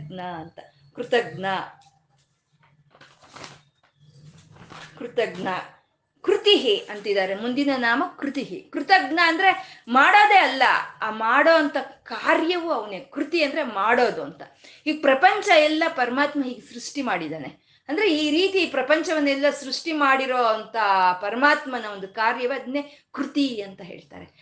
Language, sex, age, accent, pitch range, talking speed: Kannada, female, 20-39, native, 215-305 Hz, 100 wpm